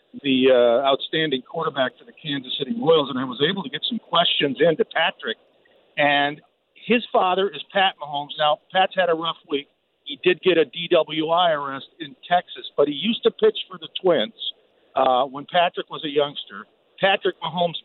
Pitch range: 155-220 Hz